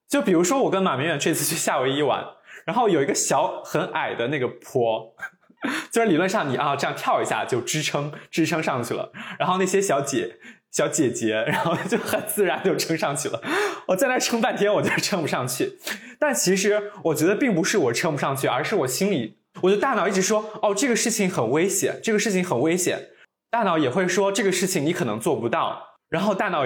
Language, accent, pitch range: Chinese, native, 145-210 Hz